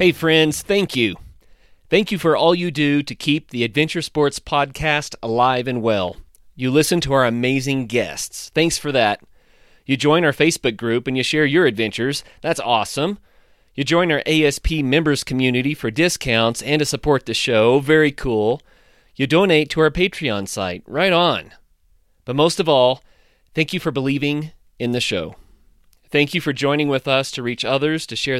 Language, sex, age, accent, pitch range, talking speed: English, male, 30-49, American, 115-155 Hz, 180 wpm